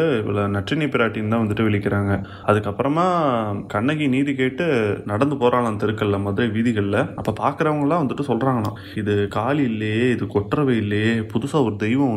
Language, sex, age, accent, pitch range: Tamil, male, 20-39, native, 105-120 Hz